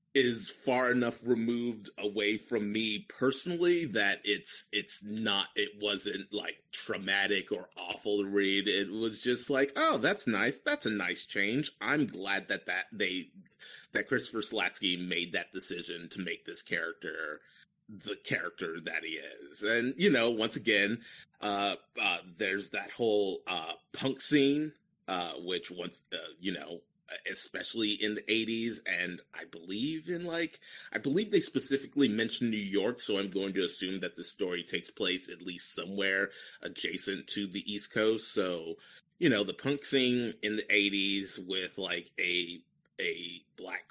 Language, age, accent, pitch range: English, 30-49, American, 100-145 Hz